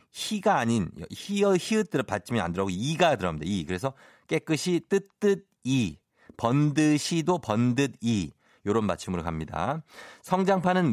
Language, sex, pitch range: Korean, male, 105-170 Hz